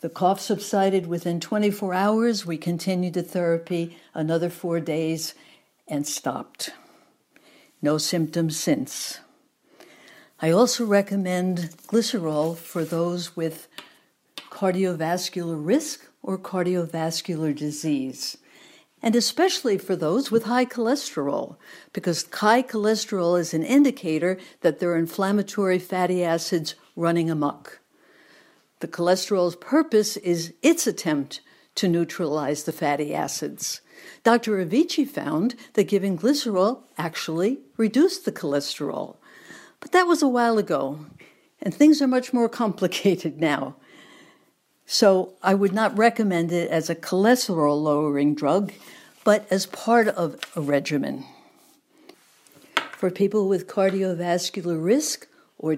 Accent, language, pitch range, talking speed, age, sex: American, English, 165-230 Hz, 115 wpm, 60-79, female